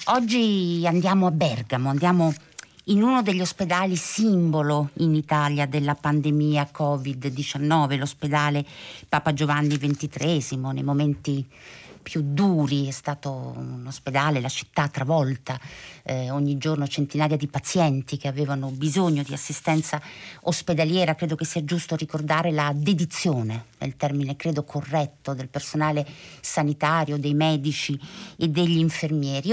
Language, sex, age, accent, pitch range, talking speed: Italian, female, 50-69, native, 145-175 Hz, 125 wpm